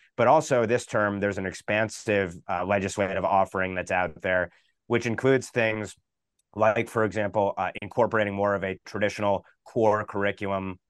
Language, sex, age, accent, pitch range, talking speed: English, male, 30-49, American, 95-110 Hz, 150 wpm